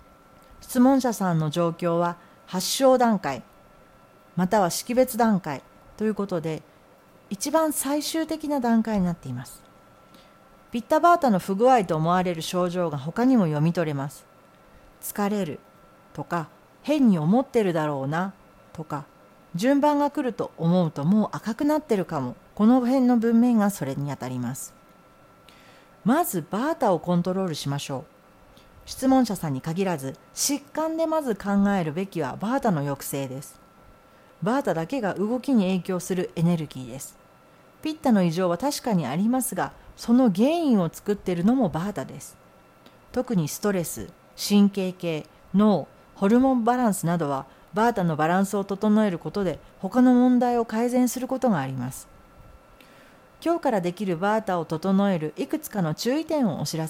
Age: 40-59